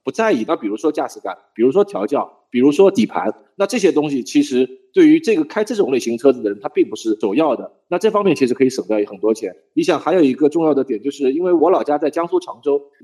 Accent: native